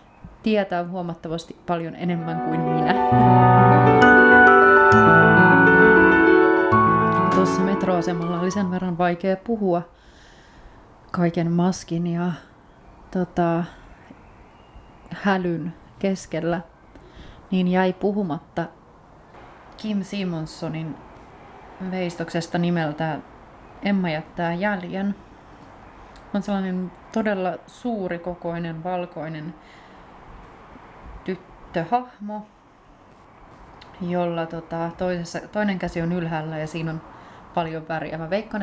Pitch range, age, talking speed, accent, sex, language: 155-185 Hz, 30-49, 75 wpm, native, female, Finnish